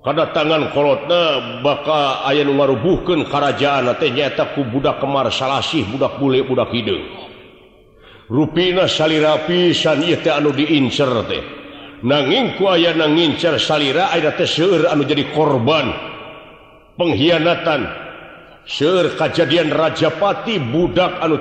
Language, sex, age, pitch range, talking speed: Indonesian, male, 60-79, 140-170 Hz, 115 wpm